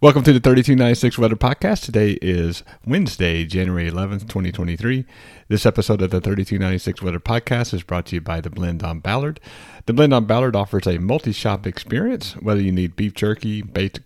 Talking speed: 180 wpm